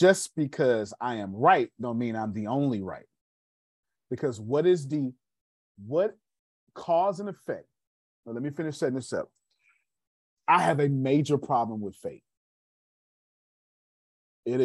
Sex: male